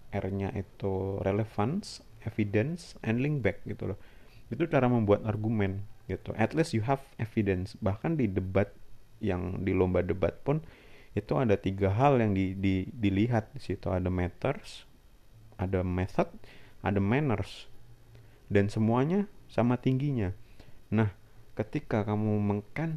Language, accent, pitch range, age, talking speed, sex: Indonesian, native, 95-120 Hz, 30-49, 130 wpm, male